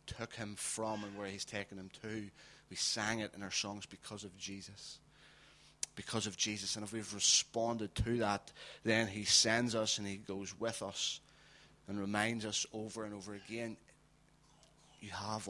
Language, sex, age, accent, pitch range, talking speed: English, male, 30-49, British, 100-115 Hz, 175 wpm